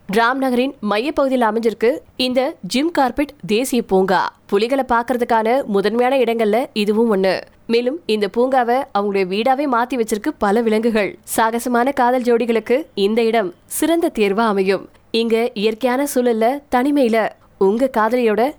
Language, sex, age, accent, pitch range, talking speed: Tamil, female, 20-39, native, 210-255 Hz, 55 wpm